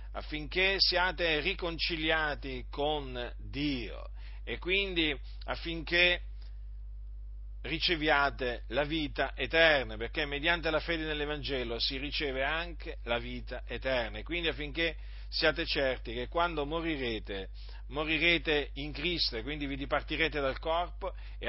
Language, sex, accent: Italian, male, native